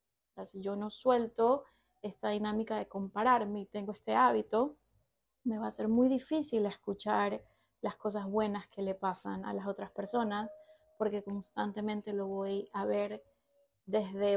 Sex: female